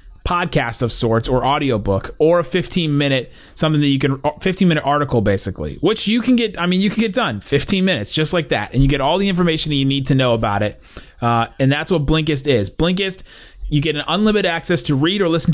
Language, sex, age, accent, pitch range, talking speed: English, male, 30-49, American, 135-175 Hz, 235 wpm